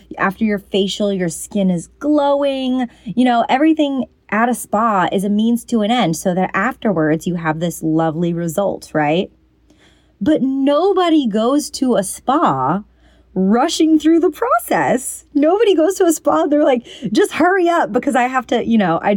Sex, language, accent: female, English, American